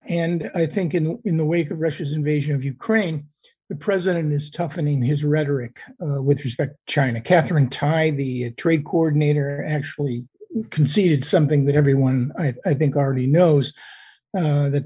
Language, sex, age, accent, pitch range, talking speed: English, male, 50-69, American, 145-165 Hz, 160 wpm